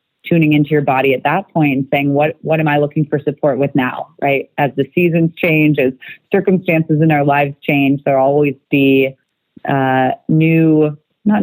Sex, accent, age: female, American, 30-49